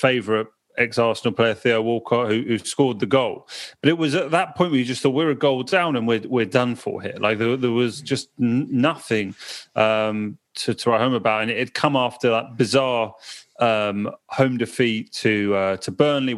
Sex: male